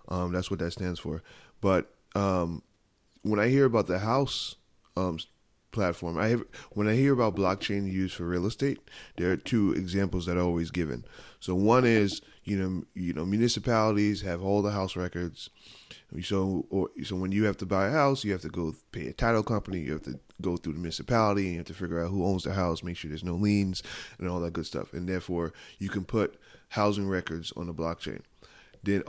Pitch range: 85-100 Hz